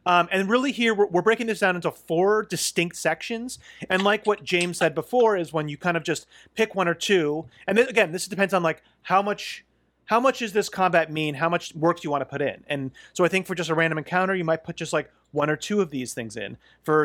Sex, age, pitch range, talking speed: male, 30-49, 155-190 Hz, 265 wpm